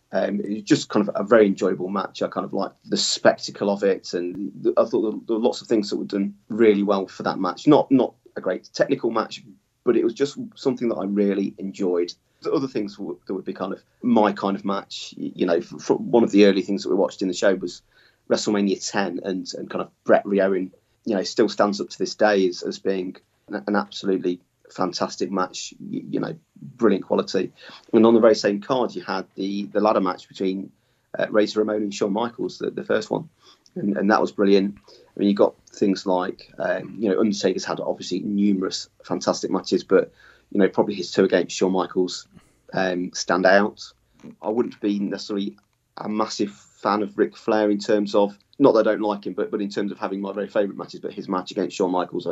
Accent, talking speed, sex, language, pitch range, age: British, 225 wpm, male, English, 95-110 Hz, 30-49